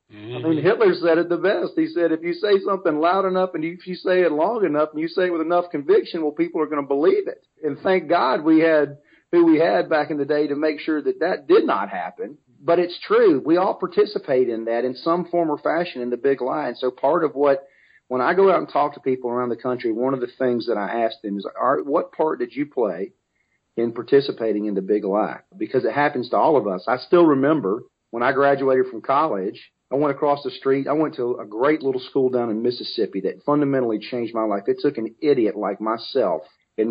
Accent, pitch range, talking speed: American, 120-170 Hz, 245 wpm